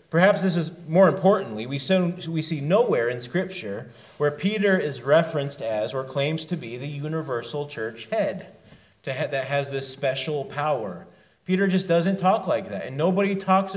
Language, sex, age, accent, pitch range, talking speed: English, male, 30-49, American, 145-195 Hz, 160 wpm